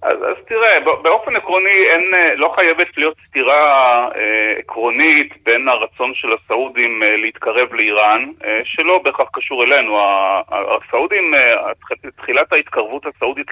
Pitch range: 115-170 Hz